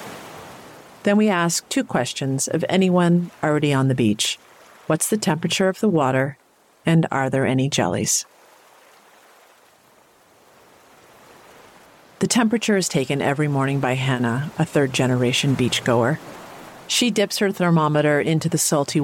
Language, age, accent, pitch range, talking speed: English, 50-69, American, 140-170 Hz, 125 wpm